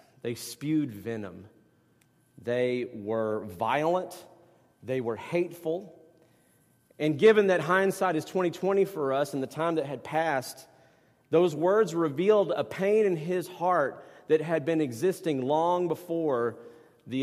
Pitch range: 115-160 Hz